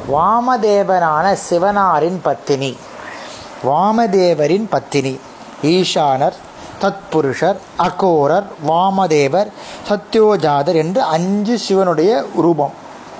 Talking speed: 70 wpm